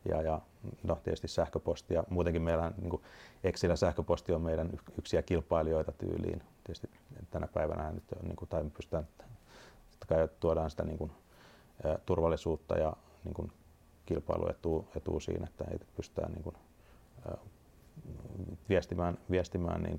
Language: Finnish